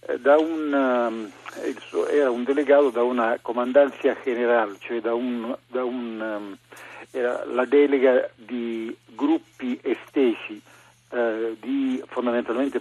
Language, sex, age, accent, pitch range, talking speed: Italian, male, 50-69, native, 120-145 Hz, 110 wpm